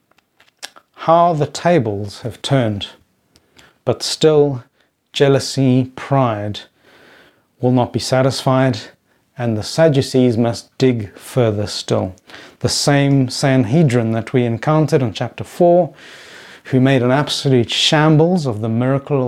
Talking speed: 115 wpm